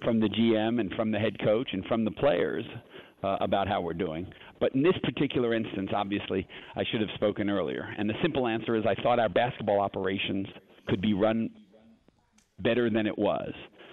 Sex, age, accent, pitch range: male, 50-69, American, 110-125 Hz